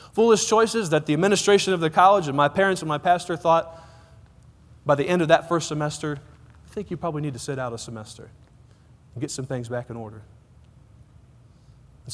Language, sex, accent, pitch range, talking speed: English, male, American, 120-180 Hz, 200 wpm